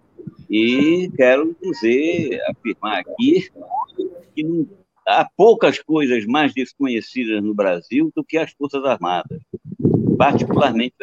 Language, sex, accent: Portuguese, male, Brazilian